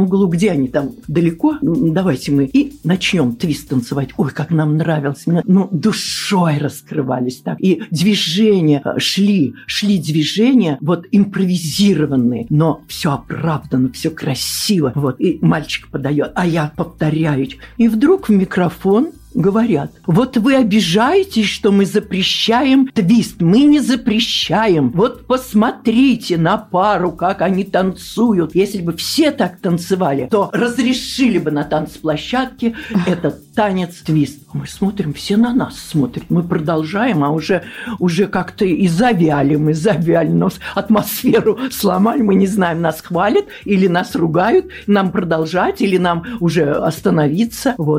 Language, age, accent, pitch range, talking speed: Russian, 50-69, native, 160-220 Hz, 130 wpm